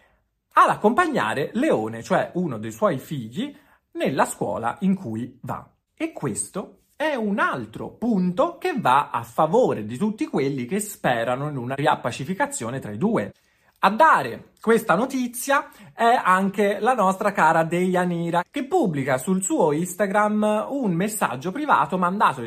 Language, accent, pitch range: Italian, native, 130-215 Hz